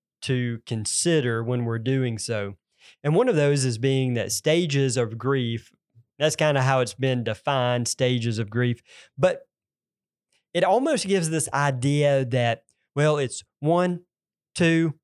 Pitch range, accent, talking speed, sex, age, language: 120-160 Hz, American, 150 wpm, male, 30-49, English